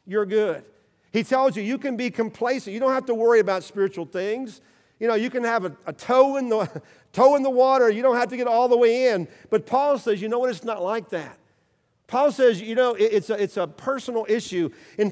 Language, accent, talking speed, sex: English, American, 245 wpm, male